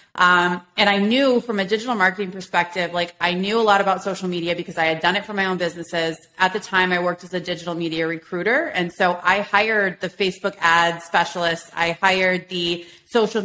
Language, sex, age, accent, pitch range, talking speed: English, female, 30-49, American, 175-205 Hz, 215 wpm